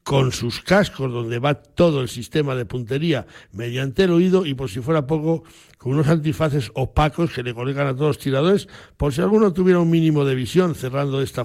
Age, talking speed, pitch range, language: 60-79, 210 wpm, 130-165 Hz, Spanish